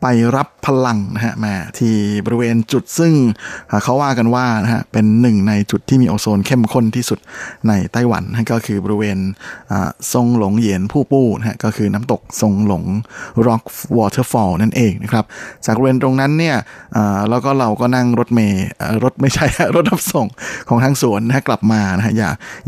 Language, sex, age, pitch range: Thai, male, 20-39, 105-120 Hz